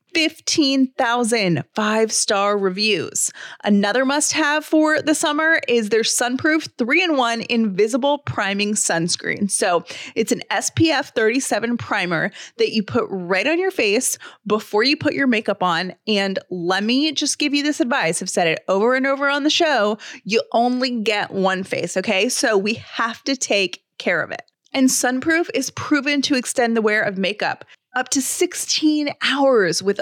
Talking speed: 160 wpm